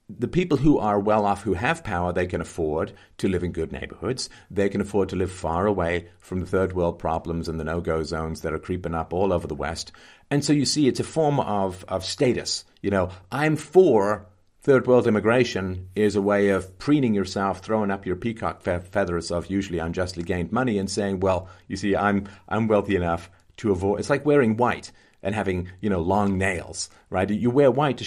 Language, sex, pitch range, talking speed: English, male, 90-110 Hz, 210 wpm